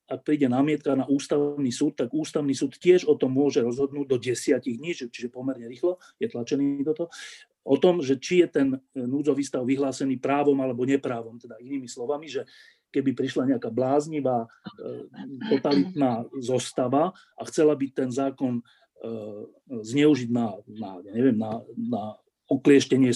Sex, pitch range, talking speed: male, 130-145 Hz, 135 wpm